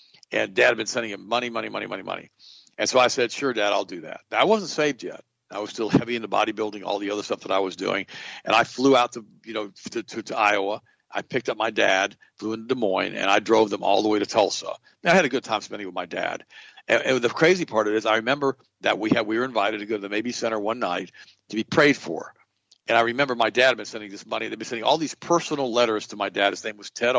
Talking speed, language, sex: 285 wpm, English, male